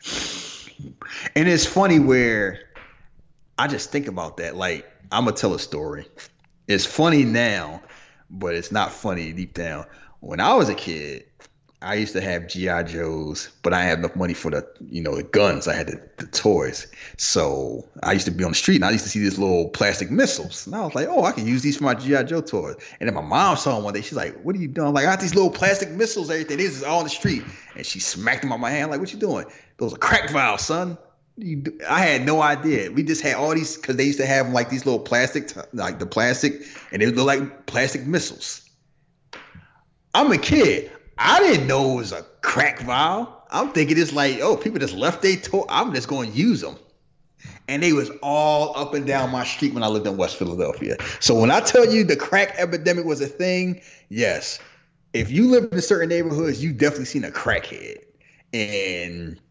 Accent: American